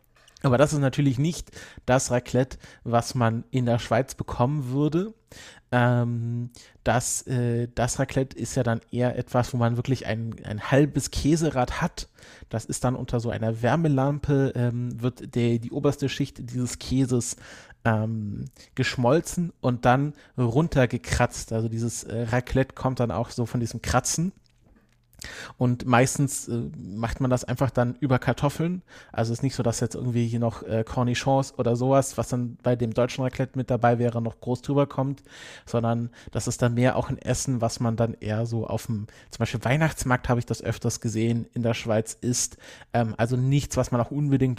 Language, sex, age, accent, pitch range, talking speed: German, male, 30-49, German, 115-130 Hz, 180 wpm